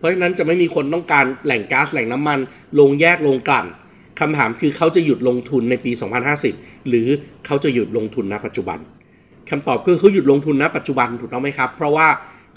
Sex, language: male, Thai